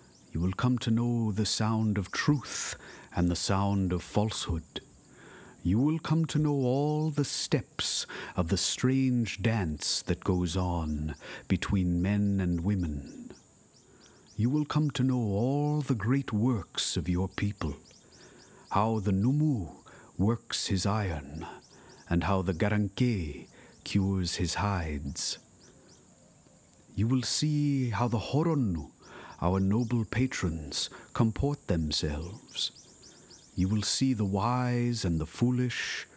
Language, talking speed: English, 130 wpm